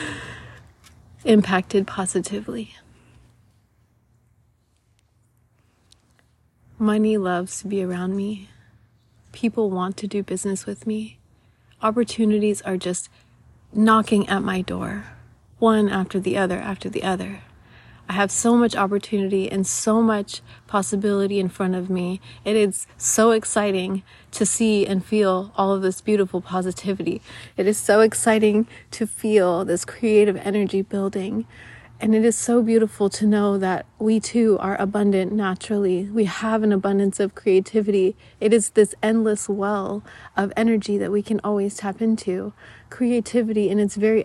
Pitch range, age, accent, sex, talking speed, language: 190-220 Hz, 30-49, American, female, 135 wpm, English